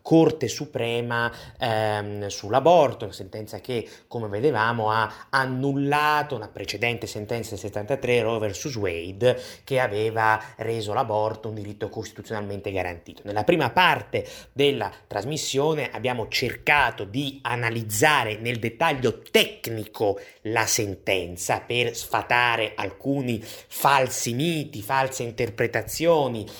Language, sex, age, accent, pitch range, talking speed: Italian, male, 30-49, native, 110-155 Hz, 110 wpm